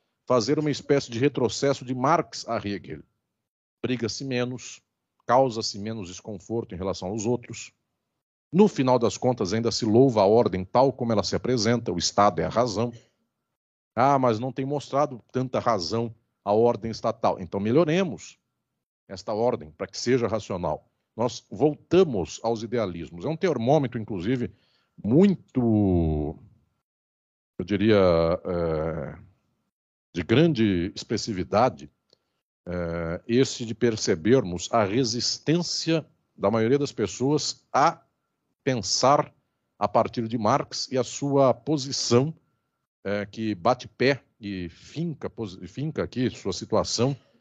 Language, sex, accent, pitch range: Portuguese, male, Brazilian, 105-135 Hz